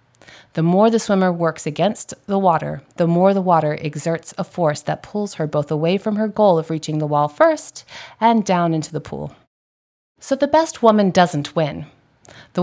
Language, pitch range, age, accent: English, 150-195 Hz, 30-49, American